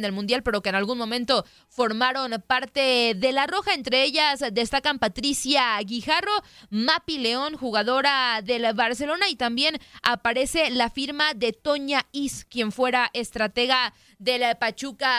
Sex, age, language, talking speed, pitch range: female, 20-39, Spanish, 140 wpm, 235-275 Hz